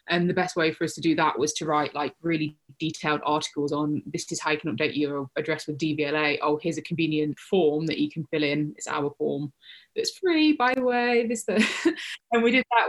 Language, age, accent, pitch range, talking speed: English, 20-39, British, 150-185 Hz, 235 wpm